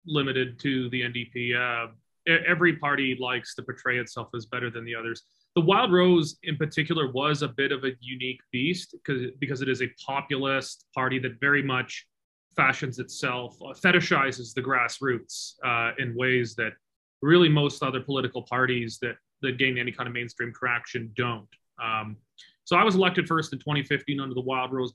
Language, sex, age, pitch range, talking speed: English, male, 30-49, 125-145 Hz, 180 wpm